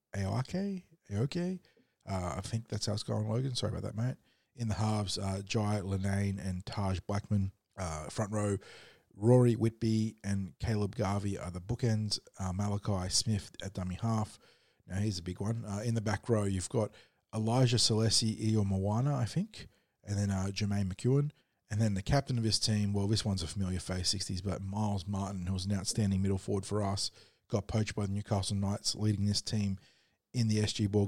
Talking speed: 200 wpm